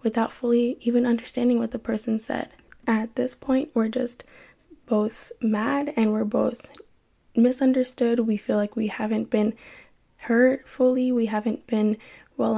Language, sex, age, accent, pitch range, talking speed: English, female, 10-29, American, 215-250 Hz, 150 wpm